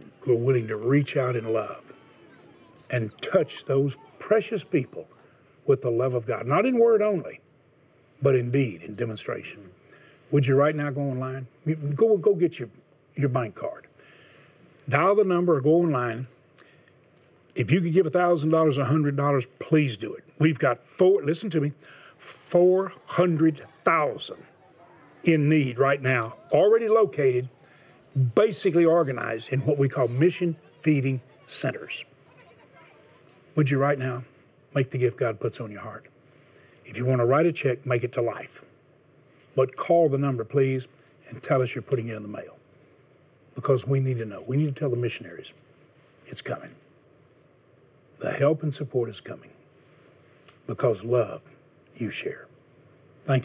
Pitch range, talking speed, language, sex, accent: 125-155 Hz, 155 wpm, English, male, American